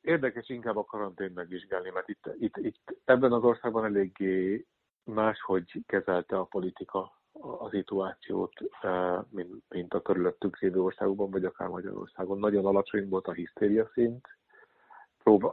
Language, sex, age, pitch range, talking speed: Hungarian, male, 50-69, 95-115 Hz, 130 wpm